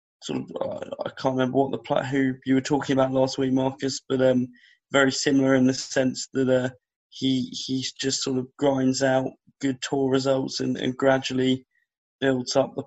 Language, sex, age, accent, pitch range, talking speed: English, male, 20-39, British, 130-135 Hz, 185 wpm